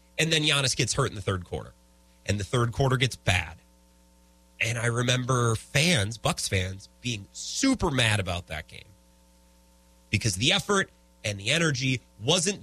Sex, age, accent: male, 30-49, American